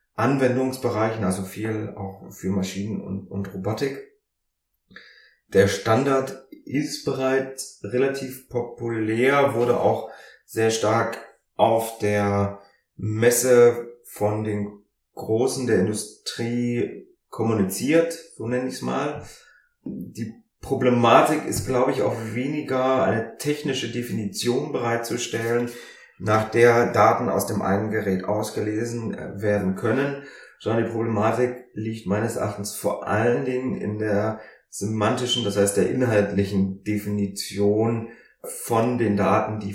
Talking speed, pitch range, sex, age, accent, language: 115 wpm, 100-120 Hz, male, 30-49, German, German